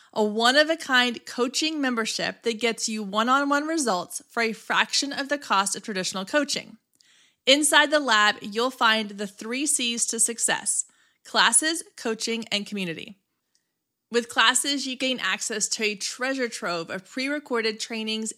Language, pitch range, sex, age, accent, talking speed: English, 215-255 Hz, female, 20-39, American, 145 wpm